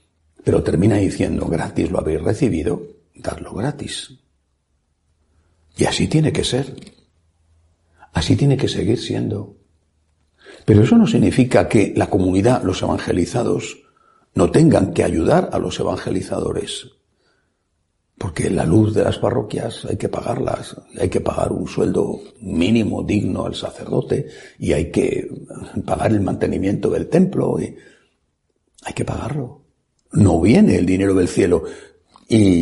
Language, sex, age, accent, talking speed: Spanish, male, 60-79, Spanish, 130 wpm